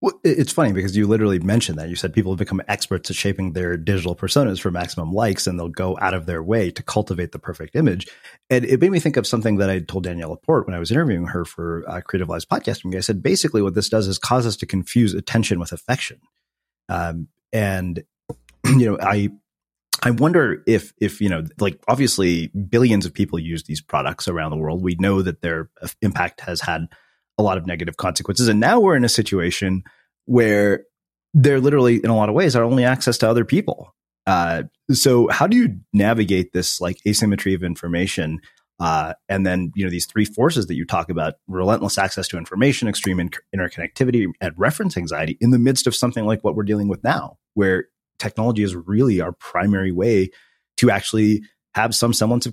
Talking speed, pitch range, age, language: 205 wpm, 90-115 Hz, 30-49, English